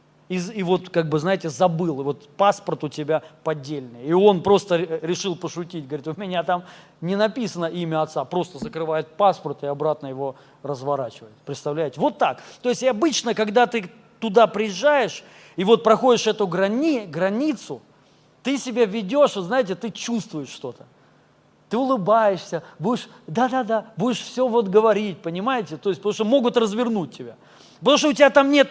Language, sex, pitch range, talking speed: Russian, male, 160-230 Hz, 170 wpm